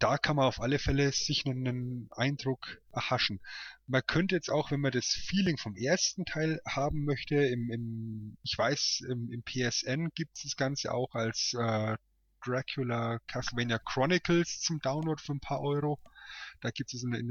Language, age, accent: German, 30-49, German